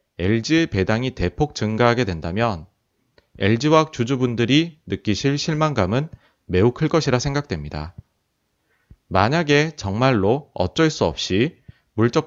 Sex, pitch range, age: male, 100-145 Hz, 30-49